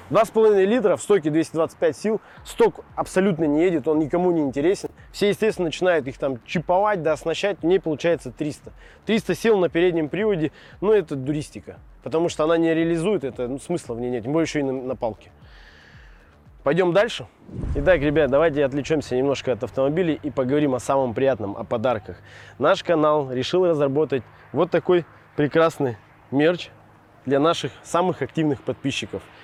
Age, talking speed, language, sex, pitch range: 20-39, 165 wpm, Russian, male, 130-170 Hz